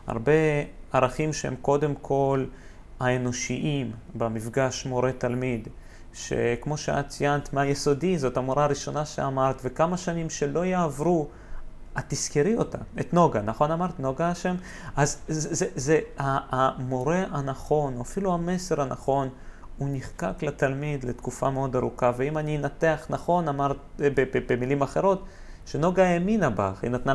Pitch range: 130-165 Hz